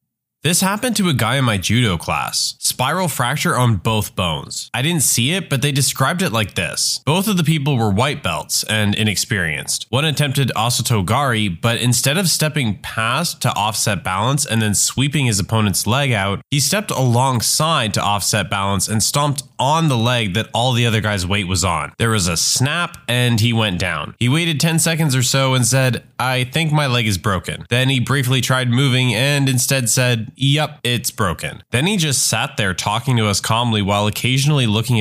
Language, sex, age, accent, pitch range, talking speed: English, male, 20-39, American, 110-145 Hz, 195 wpm